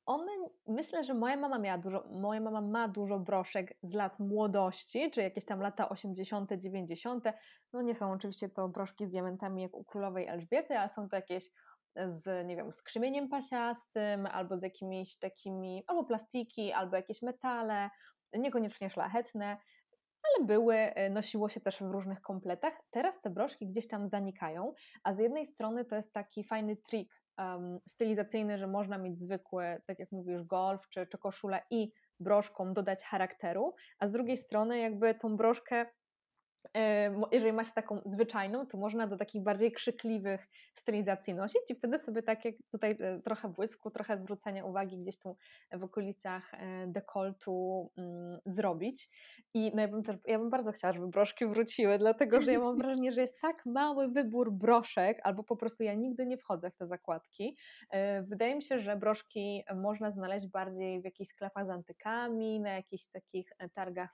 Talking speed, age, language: 165 wpm, 20-39, Polish